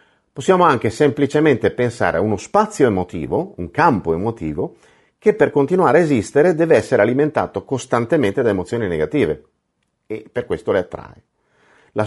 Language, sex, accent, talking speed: Italian, male, native, 145 wpm